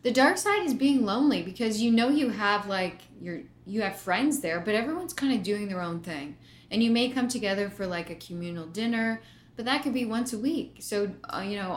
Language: English